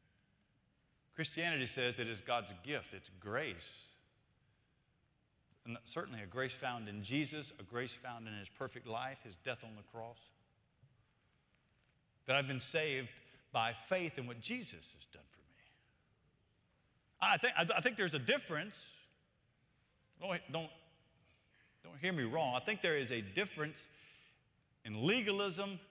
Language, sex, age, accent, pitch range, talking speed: English, male, 50-69, American, 115-160 Hz, 135 wpm